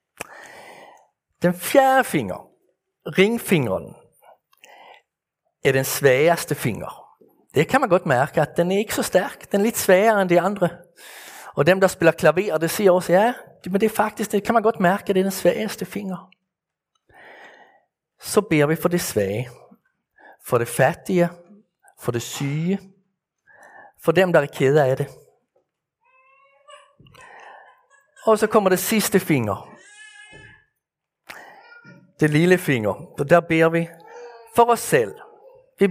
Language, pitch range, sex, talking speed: Danish, 150-200 Hz, male, 140 wpm